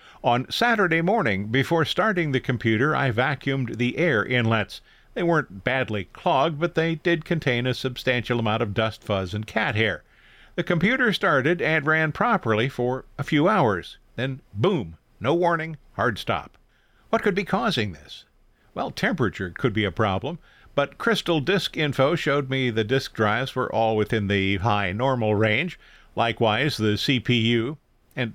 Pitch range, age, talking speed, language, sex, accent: 110-155 Hz, 50-69, 160 wpm, English, male, American